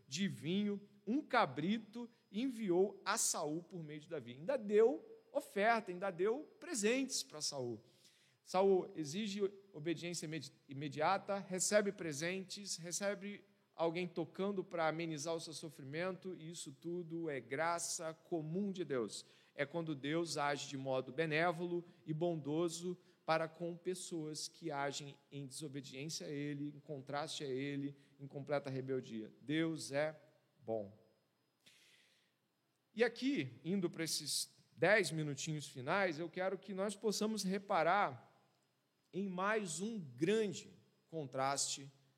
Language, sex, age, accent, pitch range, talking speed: Portuguese, male, 40-59, Brazilian, 150-195 Hz, 125 wpm